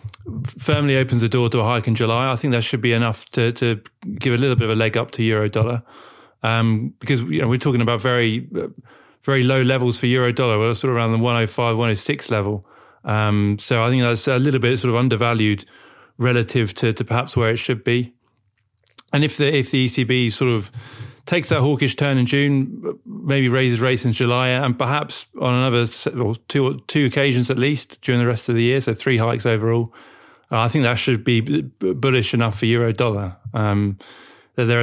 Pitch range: 115-130 Hz